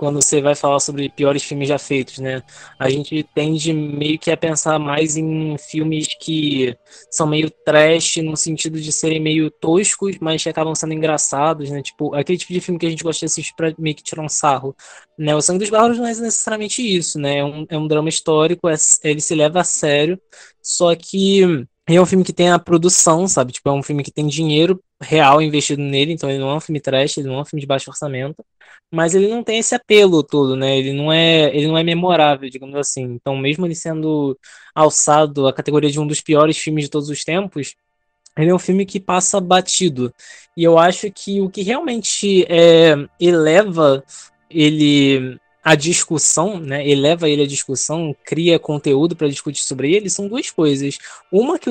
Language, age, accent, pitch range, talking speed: Portuguese, 20-39, Brazilian, 145-180 Hz, 205 wpm